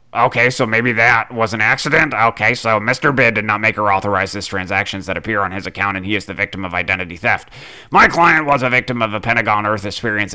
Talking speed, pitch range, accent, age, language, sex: 240 wpm, 105-125 Hz, American, 30-49, English, male